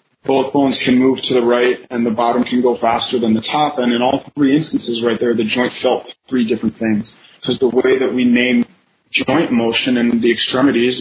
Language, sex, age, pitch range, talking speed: English, male, 30-49, 120-135 Hz, 220 wpm